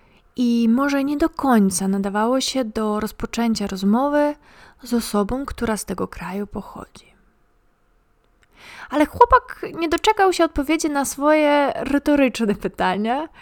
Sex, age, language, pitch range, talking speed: female, 20-39, Polish, 215-300 Hz, 120 wpm